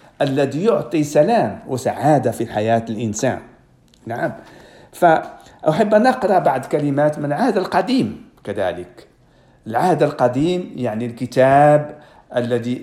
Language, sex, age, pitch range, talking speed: Swedish, male, 50-69, 130-160 Hz, 100 wpm